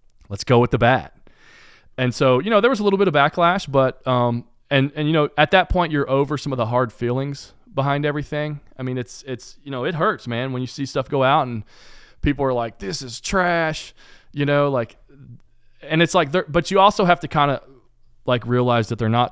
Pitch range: 105-130 Hz